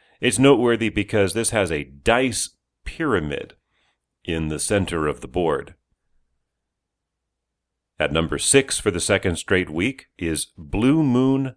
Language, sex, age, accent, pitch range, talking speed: English, male, 40-59, American, 80-110 Hz, 130 wpm